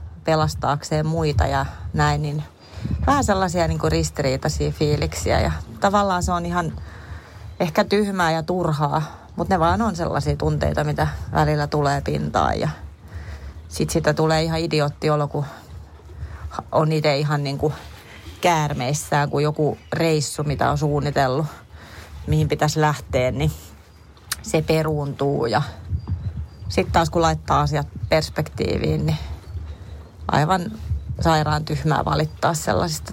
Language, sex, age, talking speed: Finnish, female, 30-49, 120 wpm